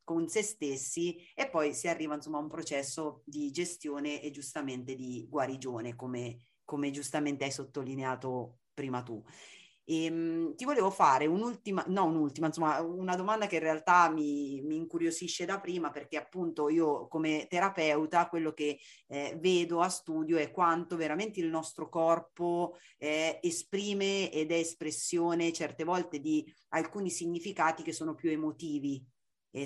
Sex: female